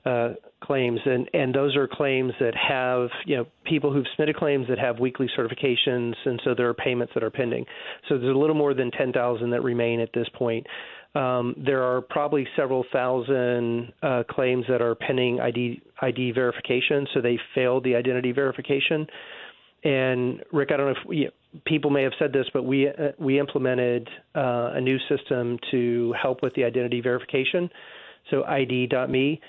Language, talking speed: English, 185 wpm